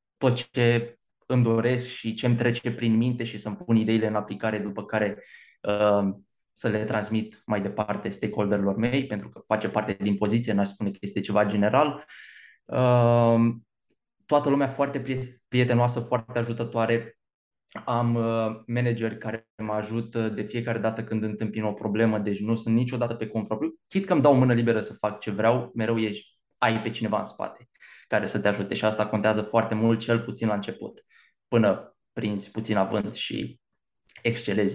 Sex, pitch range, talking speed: male, 105-120 Hz, 175 wpm